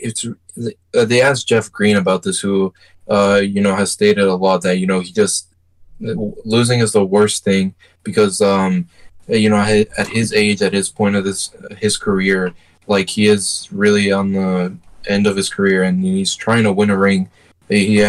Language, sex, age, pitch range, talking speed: English, male, 20-39, 90-105 Hz, 190 wpm